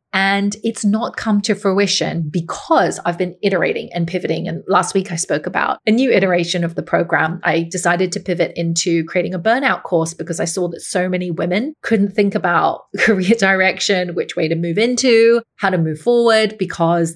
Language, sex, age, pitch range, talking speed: English, female, 30-49, 175-200 Hz, 190 wpm